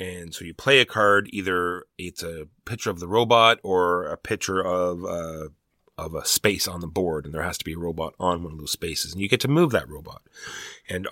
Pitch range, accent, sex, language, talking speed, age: 85-105 Hz, American, male, English, 235 wpm, 30-49